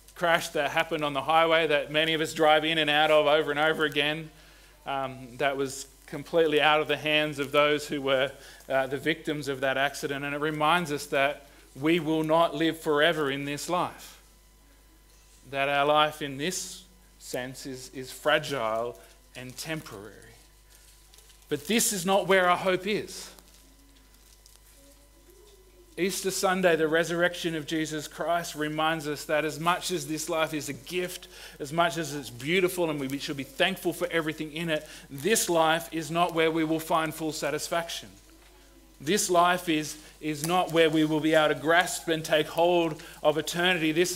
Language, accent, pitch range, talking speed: English, Australian, 150-170 Hz, 175 wpm